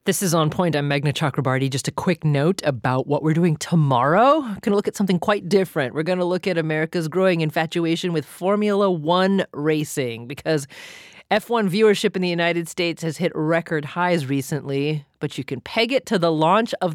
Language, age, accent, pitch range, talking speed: English, 30-49, American, 145-205 Hz, 200 wpm